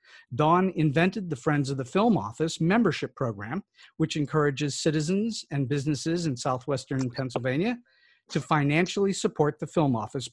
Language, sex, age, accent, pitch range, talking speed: English, male, 50-69, American, 130-165 Hz, 140 wpm